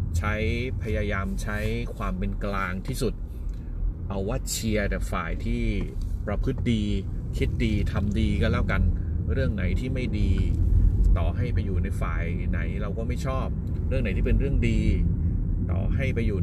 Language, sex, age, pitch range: Thai, male, 30-49, 90-110 Hz